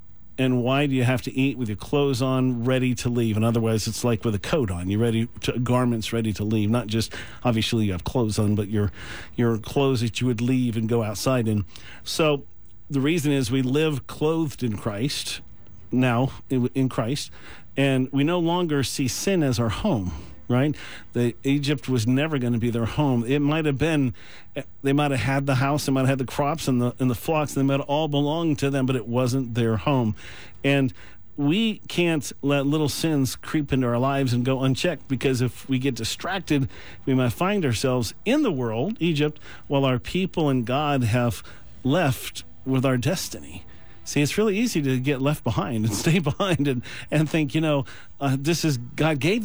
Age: 50-69